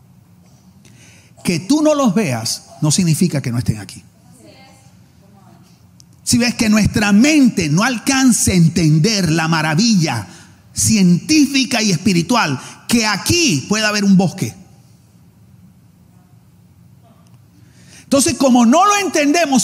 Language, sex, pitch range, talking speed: Spanish, male, 190-295 Hz, 110 wpm